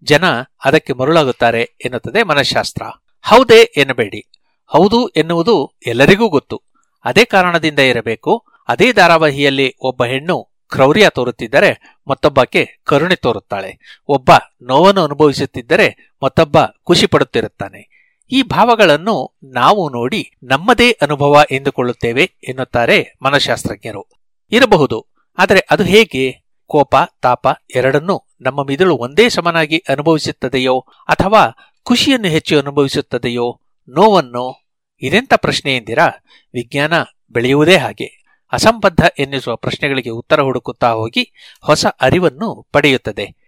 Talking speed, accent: 95 wpm, native